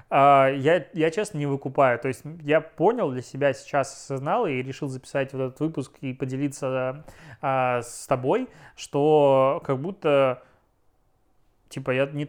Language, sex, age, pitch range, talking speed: Russian, male, 20-39, 130-155 Hz, 150 wpm